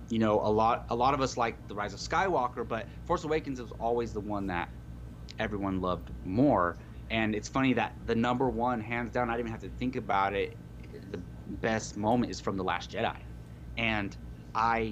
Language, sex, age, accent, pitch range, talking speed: English, male, 30-49, American, 80-115 Hz, 205 wpm